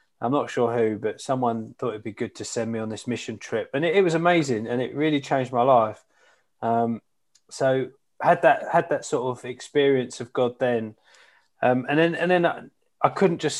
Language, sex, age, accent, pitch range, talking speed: English, male, 20-39, British, 120-145 Hz, 215 wpm